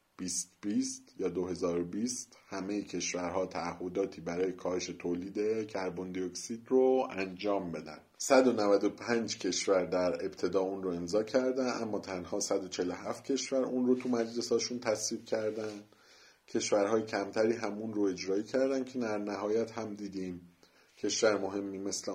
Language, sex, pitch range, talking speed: Persian, male, 90-120 Hz, 120 wpm